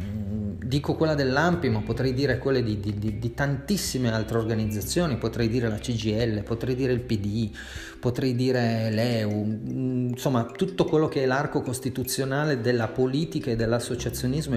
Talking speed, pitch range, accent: 140 wpm, 110-135 Hz, native